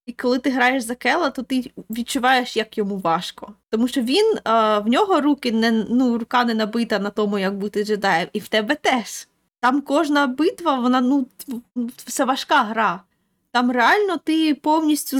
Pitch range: 235-295 Hz